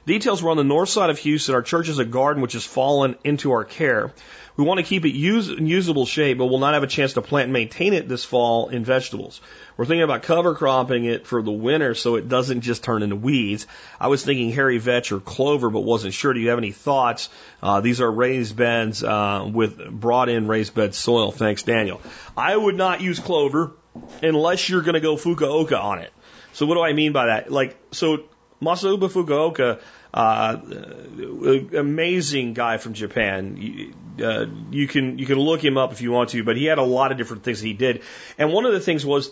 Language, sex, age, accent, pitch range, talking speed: English, male, 40-59, American, 115-155 Hz, 220 wpm